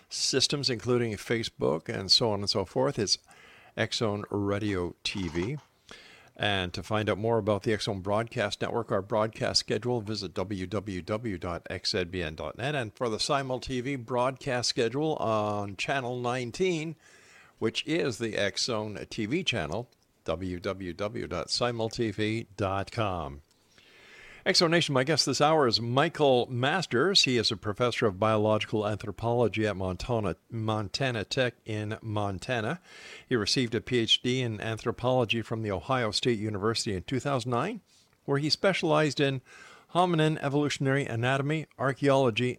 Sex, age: male, 50-69